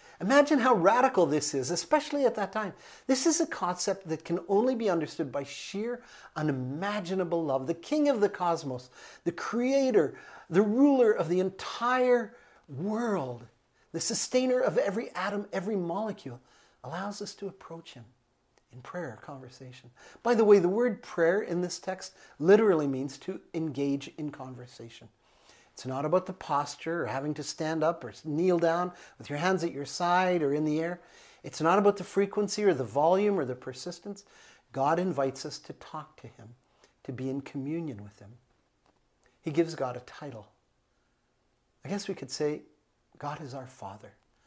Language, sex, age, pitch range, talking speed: English, male, 50-69, 135-200 Hz, 170 wpm